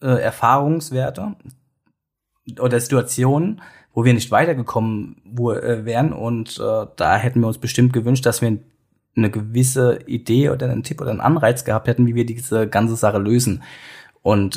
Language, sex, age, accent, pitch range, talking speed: German, male, 20-39, German, 105-125 Hz, 150 wpm